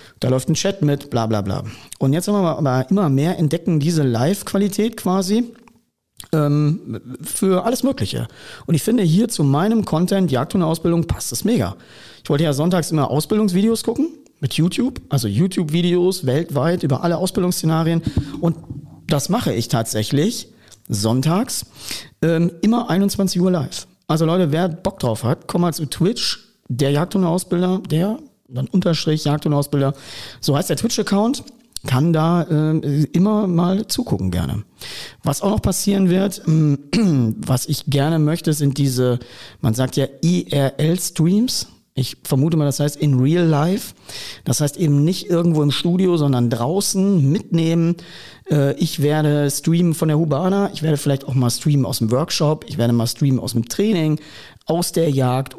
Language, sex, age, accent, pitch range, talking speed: German, male, 40-59, German, 140-180 Hz, 165 wpm